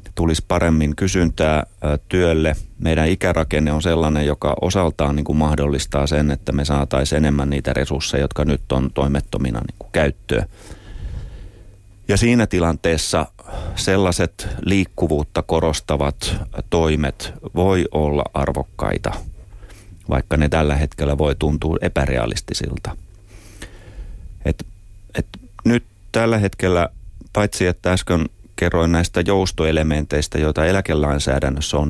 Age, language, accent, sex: 30-49, Finnish, native, male